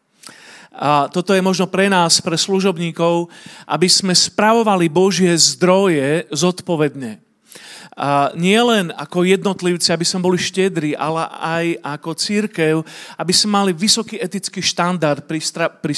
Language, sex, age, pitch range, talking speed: Slovak, male, 40-59, 145-180 Hz, 135 wpm